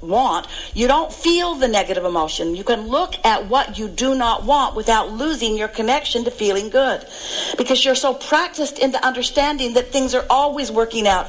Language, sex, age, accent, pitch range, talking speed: English, female, 50-69, American, 205-270 Hz, 190 wpm